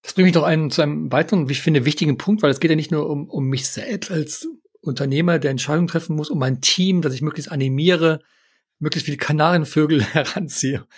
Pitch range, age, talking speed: 140-190 Hz, 40-59, 220 wpm